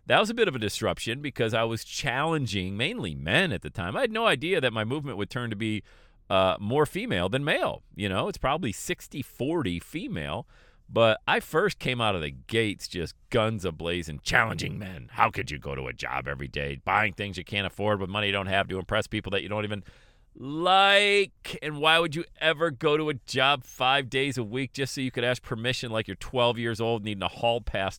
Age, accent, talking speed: 40-59, American, 225 wpm